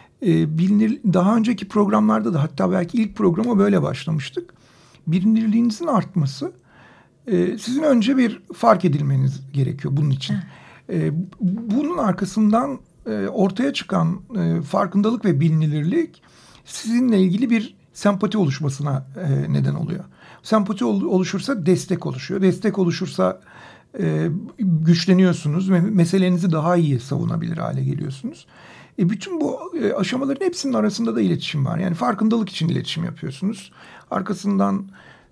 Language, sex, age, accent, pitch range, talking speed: Turkish, male, 60-79, native, 160-210 Hz, 105 wpm